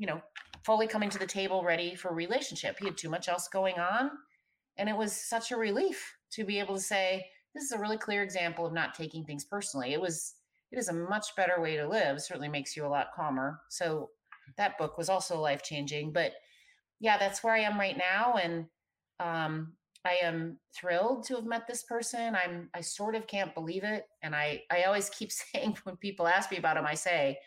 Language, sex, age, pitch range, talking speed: English, female, 30-49, 160-215 Hz, 220 wpm